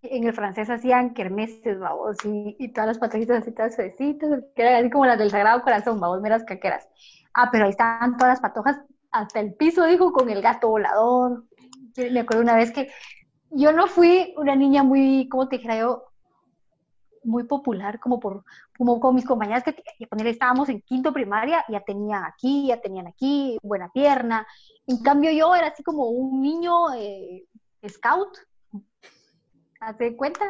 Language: Spanish